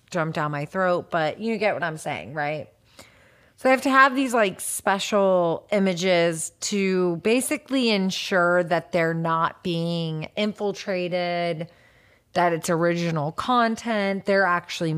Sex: female